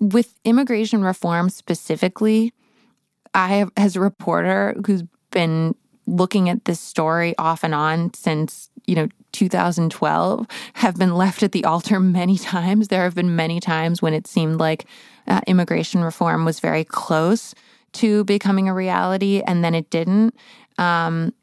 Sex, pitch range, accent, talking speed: female, 170-215 Hz, American, 150 wpm